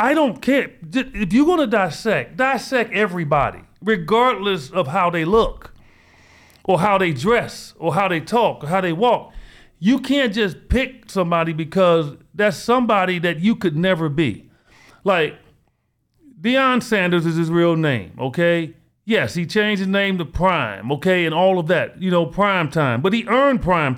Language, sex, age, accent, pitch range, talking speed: English, male, 40-59, American, 160-220 Hz, 170 wpm